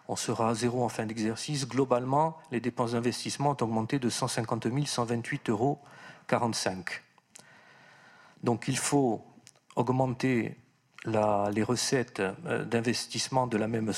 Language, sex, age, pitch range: French, male, 50-69, 110-130 Hz